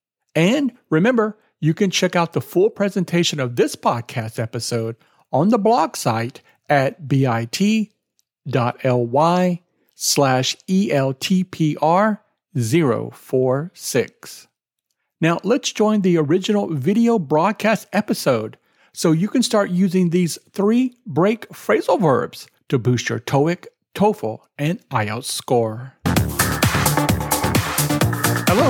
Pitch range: 140-210 Hz